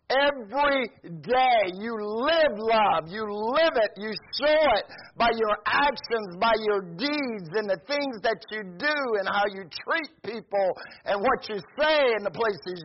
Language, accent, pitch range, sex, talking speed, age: English, American, 220-280 Hz, male, 165 wpm, 50-69